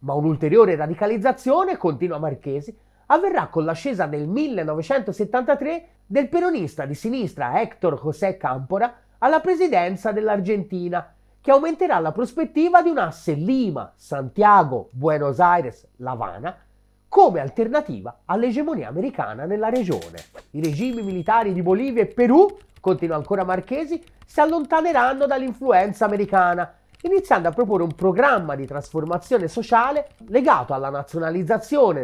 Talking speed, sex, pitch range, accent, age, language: 120 wpm, male, 165-260 Hz, native, 30-49, Italian